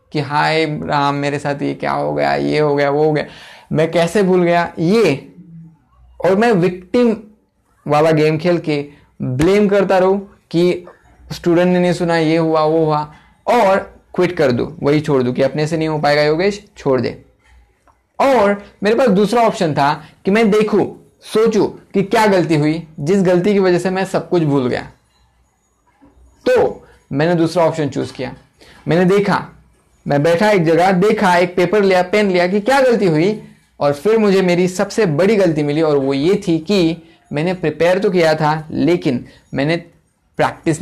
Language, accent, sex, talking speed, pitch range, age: Hindi, native, male, 180 wpm, 150-190 Hz, 20-39